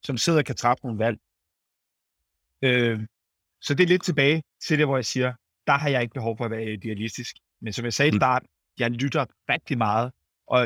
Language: Danish